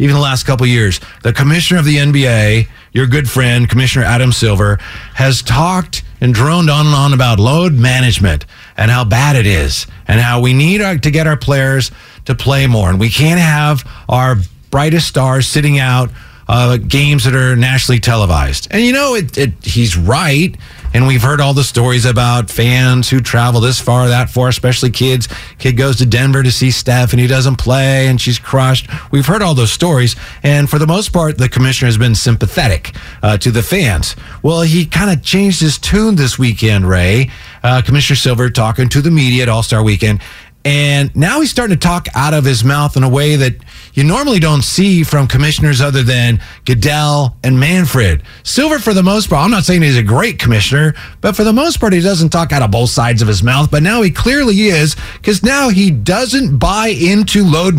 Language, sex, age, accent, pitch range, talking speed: English, male, 40-59, American, 120-170 Hz, 205 wpm